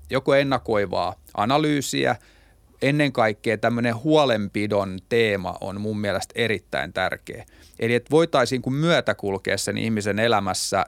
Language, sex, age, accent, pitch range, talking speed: Finnish, male, 30-49, native, 100-130 Hz, 120 wpm